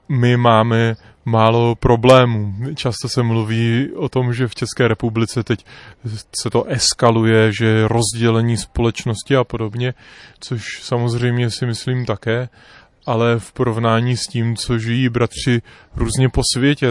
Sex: male